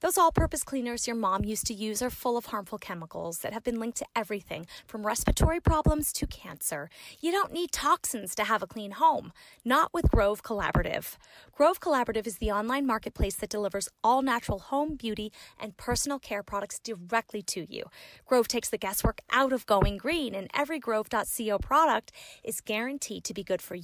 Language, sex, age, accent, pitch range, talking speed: English, female, 30-49, American, 205-255 Hz, 185 wpm